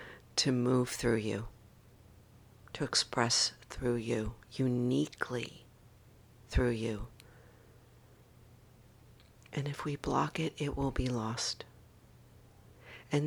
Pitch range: 115-130 Hz